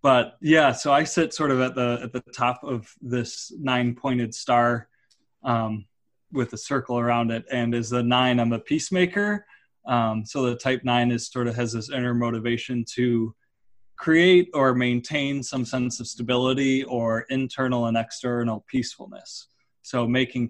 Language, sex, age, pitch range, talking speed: English, male, 20-39, 120-135 Hz, 165 wpm